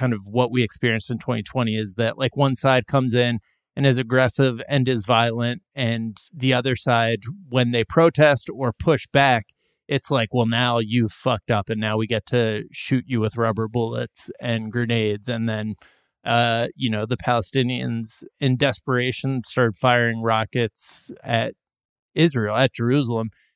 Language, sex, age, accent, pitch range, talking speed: English, male, 20-39, American, 115-140 Hz, 165 wpm